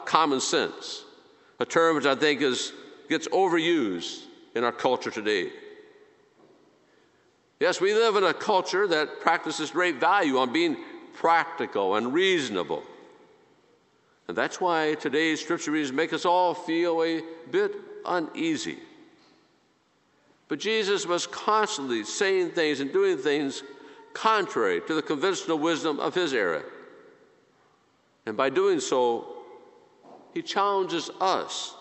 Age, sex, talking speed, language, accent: 50-69, male, 125 wpm, English, American